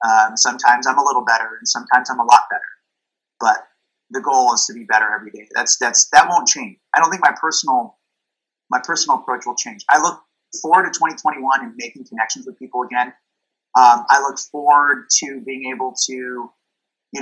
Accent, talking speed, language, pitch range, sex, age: American, 195 wpm, English, 120-135 Hz, male, 30-49